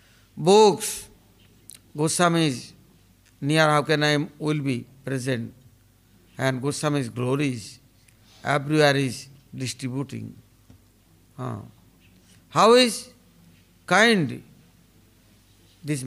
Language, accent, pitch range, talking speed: English, Indian, 115-175 Hz, 80 wpm